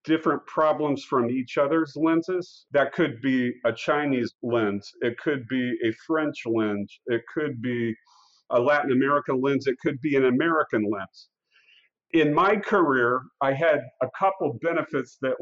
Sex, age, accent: male, 50-69, American